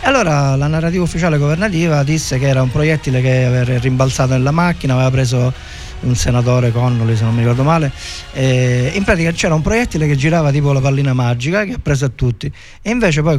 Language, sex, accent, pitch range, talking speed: Italian, male, native, 120-145 Hz, 200 wpm